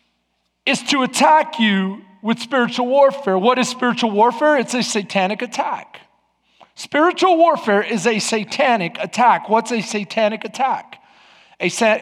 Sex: male